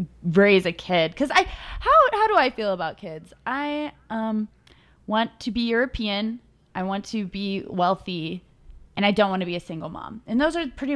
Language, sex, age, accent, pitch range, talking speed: English, female, 20-39, American, 175-230 Hz, 195 wpm